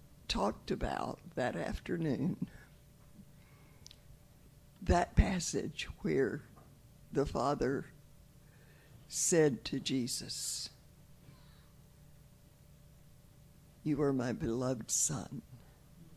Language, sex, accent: English, female, American